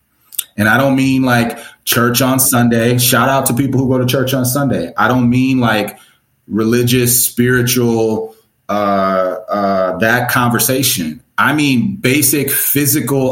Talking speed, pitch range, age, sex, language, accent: 145 wpm, 105-135 Hz, 30-49, male, English, American